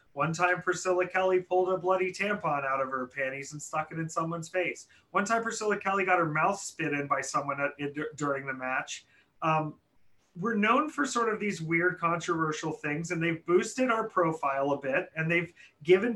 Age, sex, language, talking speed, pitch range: 30-49, male, English, 195 wpm, 145-185 Hz